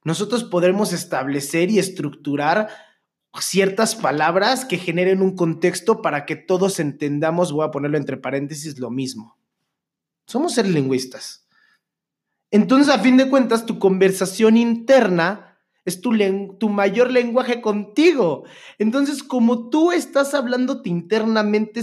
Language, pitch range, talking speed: Spanish, 165-225 Hz, 125 wpm